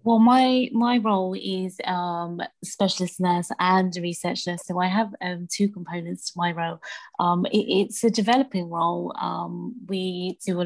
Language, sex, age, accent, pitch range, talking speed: English, female, 20-39, British, 175-195 Hz, 170 wpm